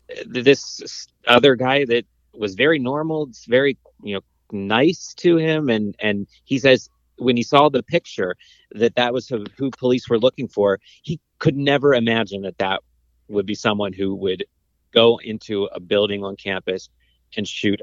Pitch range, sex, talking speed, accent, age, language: 100-125 Hz, male, 170 wpm, American, 30-49, English